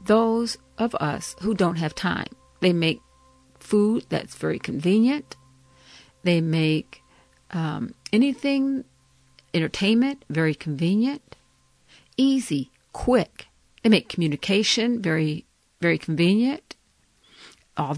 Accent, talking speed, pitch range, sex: American, 95 wpm, 165-230 Hz, female